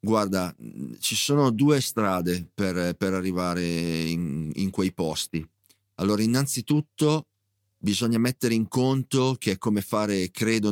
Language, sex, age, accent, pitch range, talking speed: Italian, male, 40-59, native, 95-120 Hz, 130 wpm